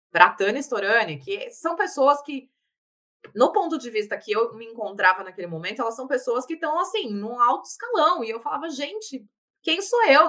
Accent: Brazilian